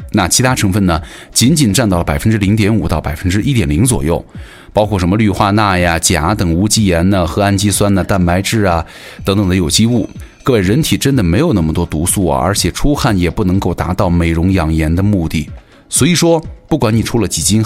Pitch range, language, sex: 85-110 Hz, Chinese, male